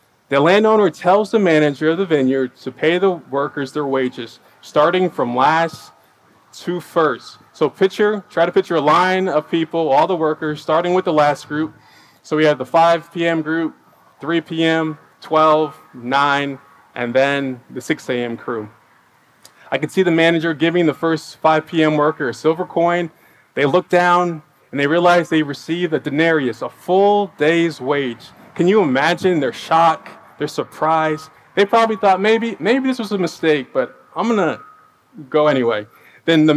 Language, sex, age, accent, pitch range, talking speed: English, male, 20-39, American, 135-175 Hz, 170 wpm